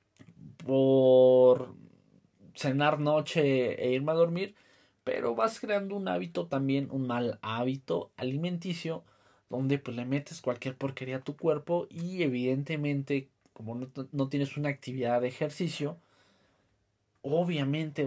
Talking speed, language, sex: 125 wpm, Spanish, male